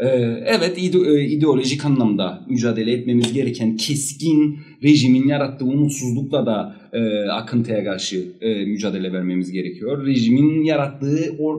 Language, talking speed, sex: Turkish, 100 wpm, male